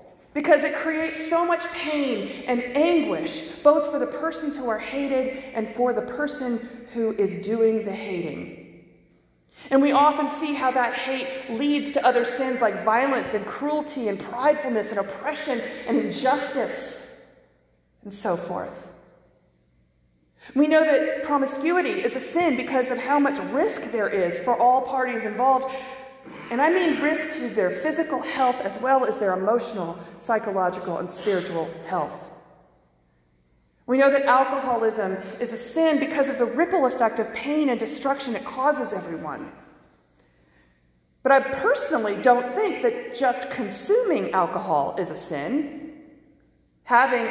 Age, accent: 40-59, American